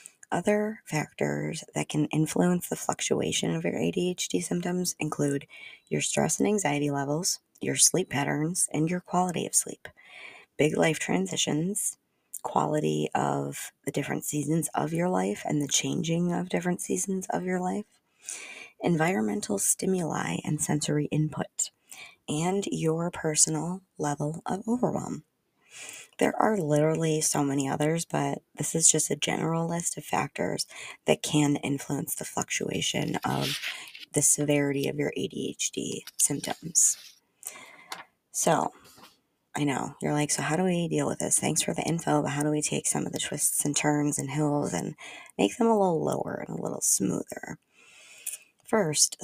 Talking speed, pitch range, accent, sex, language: 150 wpm, 145-180 Hz, American, female, English